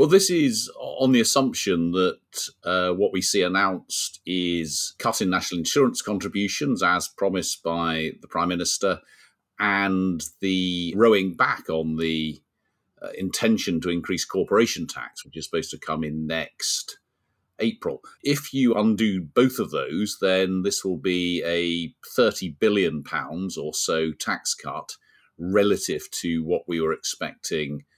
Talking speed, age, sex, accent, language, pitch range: 145 wpm, 40-59, male, British, English, 80-100 Hz